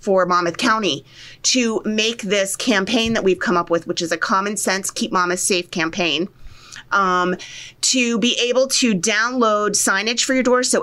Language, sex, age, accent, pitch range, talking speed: English, female, 30-49, American, 180-230 Hz, 175 wpm